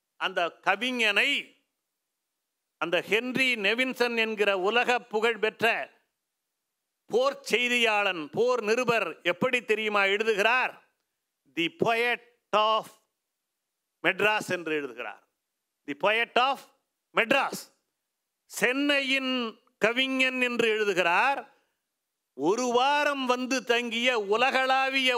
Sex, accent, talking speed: male, native, 55 wpm